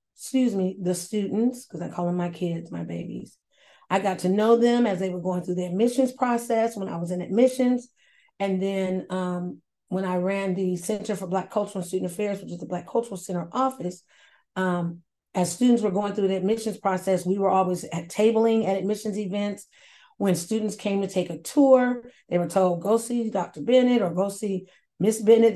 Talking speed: 205 wpm